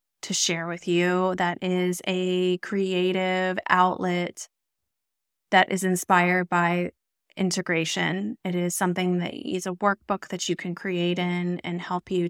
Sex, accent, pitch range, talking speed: female, American, 175-220 Hz, 140 wpm